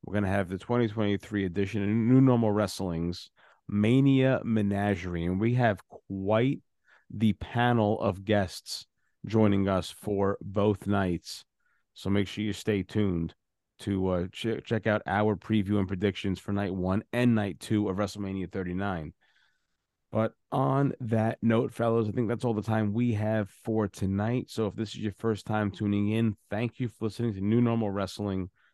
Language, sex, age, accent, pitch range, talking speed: English, male, 30-49, American, 95-110 Hz, 170 wpm